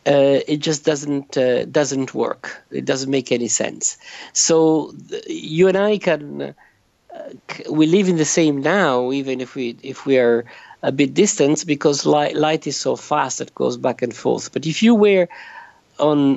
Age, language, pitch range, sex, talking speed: 50-69, English, 130-175 Hz, male, 180 wpm